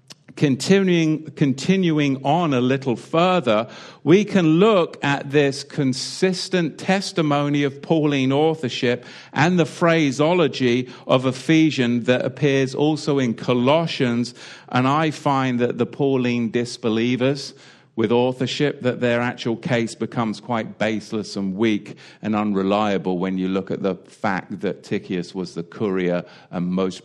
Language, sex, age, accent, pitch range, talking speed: English, male, 50-69, British, 100-150 Hz, 130 wpm